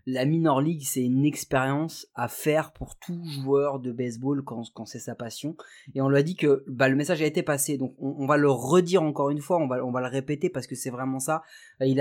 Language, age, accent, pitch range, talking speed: French, 20-39, French, 135-165 Hz, 255 wpm